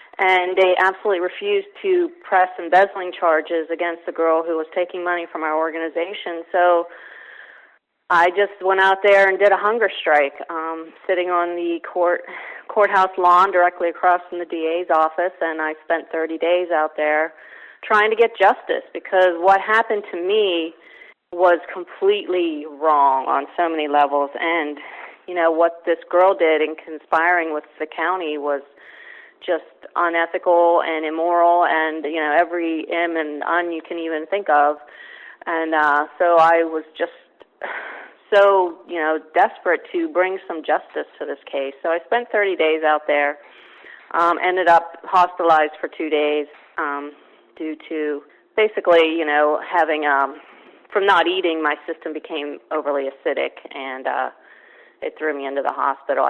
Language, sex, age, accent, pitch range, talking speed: English, female, 40-59, American, 155-185 Hz, 160 wpm